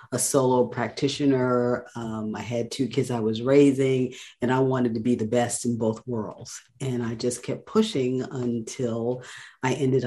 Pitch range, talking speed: 115-135 Hz, 175 wpm